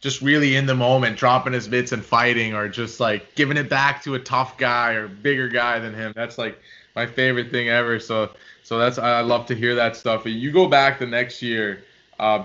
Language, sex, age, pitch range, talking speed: English, male, 20-39, 110-135 Hz, 225 wpm